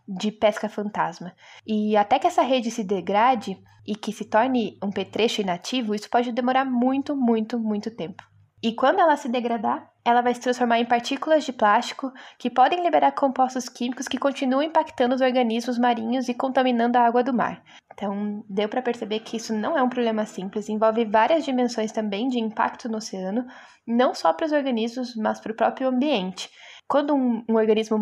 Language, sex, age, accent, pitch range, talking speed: Portuguese, female, 10-29, Brazilian, 215-260 Hz, 185 wpm